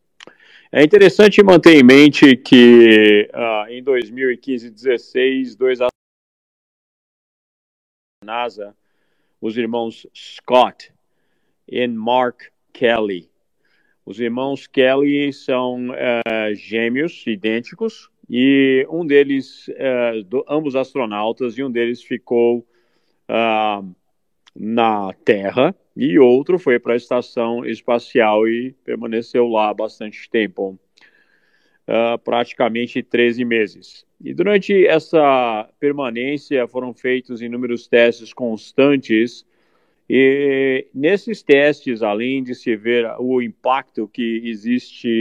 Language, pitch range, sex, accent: Portuguese, 115-130 Hz, male, Brazilian